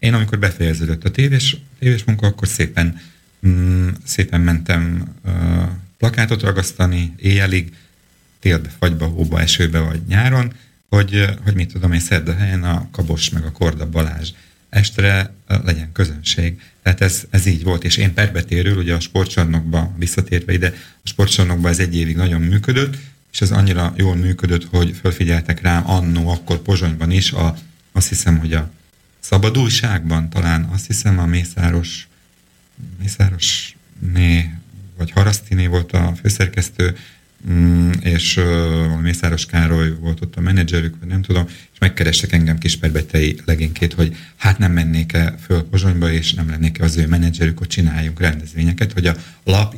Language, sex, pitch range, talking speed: Slovak, male, 85-95 Hz, 150 wpm